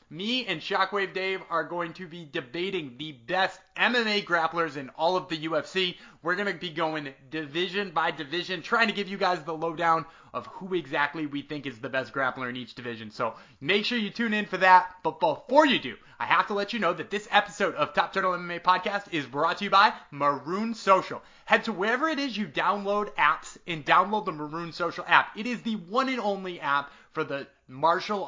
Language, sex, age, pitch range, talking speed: English, male, 30-49, 160-205 Hz, 215 wpm